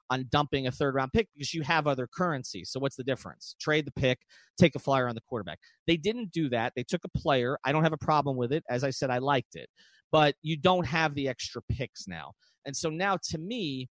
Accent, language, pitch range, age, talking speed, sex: American, English, 130-175 Hz, 40-59, 250 wpm, male